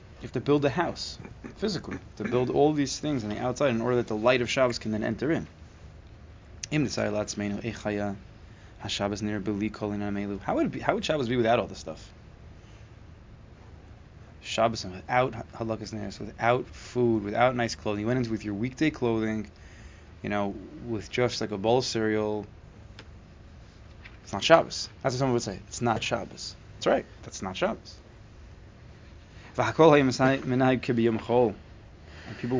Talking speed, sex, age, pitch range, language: 150 wpm, male, 20-39, 100-120 Hz, English